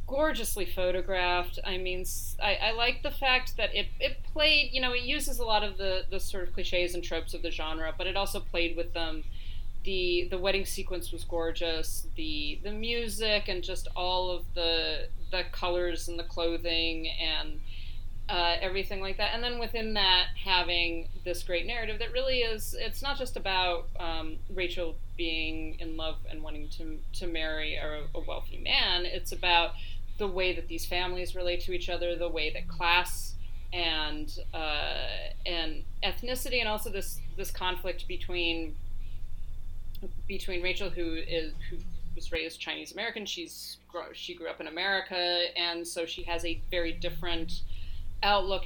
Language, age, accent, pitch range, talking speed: English, 30-49, American, 160-190 Hz, 170 wpm